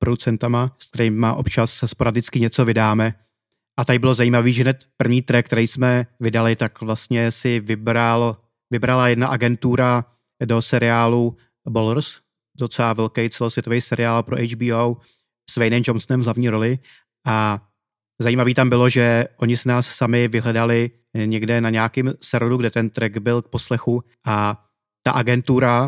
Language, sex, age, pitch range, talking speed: Czech, male, 30-49, 115-120 Hz, 140 wpm